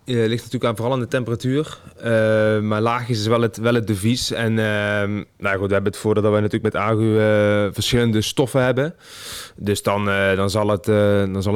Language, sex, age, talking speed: Dutch, male, 20-39, 225 wpm